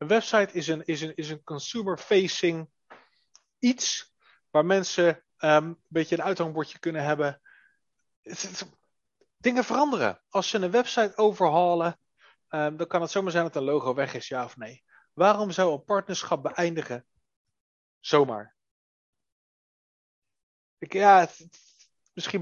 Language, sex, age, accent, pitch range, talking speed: English, male, 30-49, Dutch, 165-200 Hz, 110 wpm